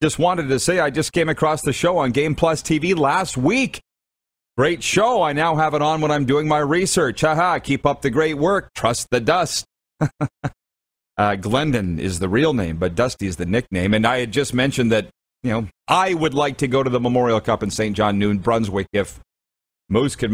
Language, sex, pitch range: English, male, 100-150 Hz